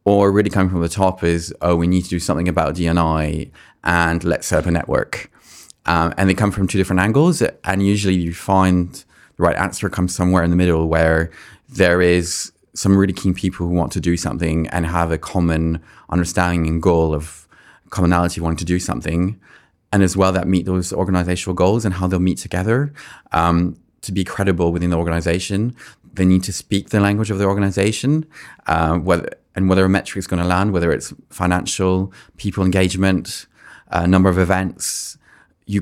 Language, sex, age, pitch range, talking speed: English, male, 20-39, 85-95 Hz, 190 wpm